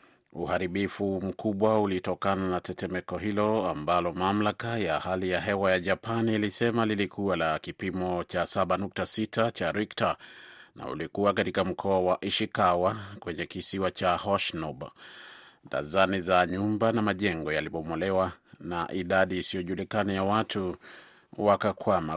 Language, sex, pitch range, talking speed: Swahili, male, 90-105 Hz, 120 wpm